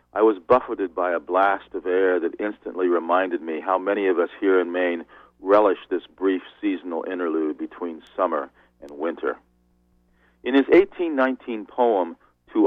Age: 50-69